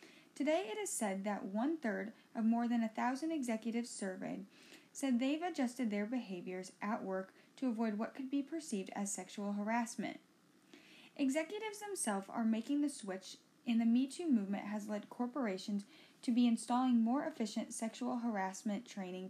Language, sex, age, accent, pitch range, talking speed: English, female, 10-29, American, 215-290 Hz, 160 wpm